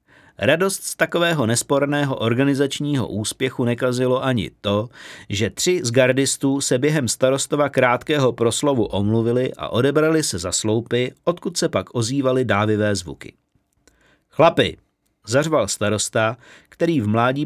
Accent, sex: native, male